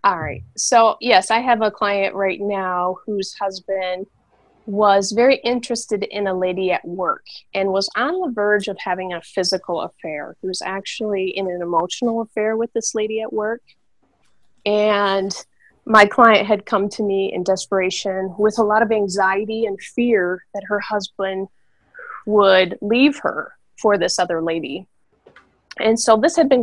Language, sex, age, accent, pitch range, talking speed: English, female, 30-49, American, 190-225 Hz, 165 wpm